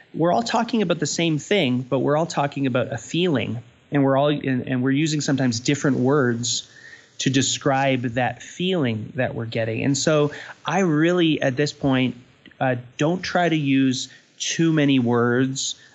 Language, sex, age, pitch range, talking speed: English, male, 30-49, 125-145 Hz, 170 wpm